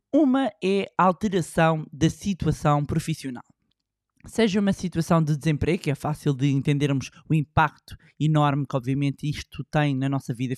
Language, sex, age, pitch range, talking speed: Portuguese, male, 20-39, 150-185 Hz, 155 wpm